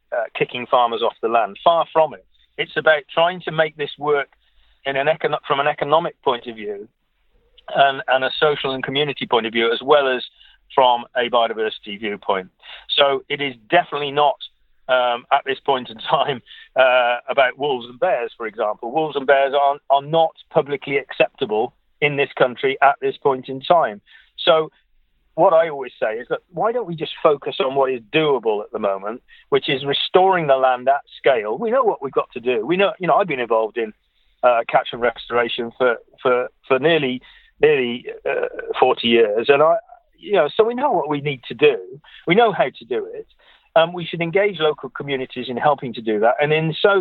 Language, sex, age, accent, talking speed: English, male, 40-59, British, 200 wpm